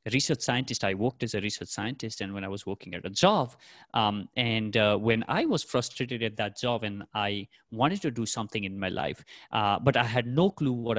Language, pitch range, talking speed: English, 105-140 Hz, 230 wpm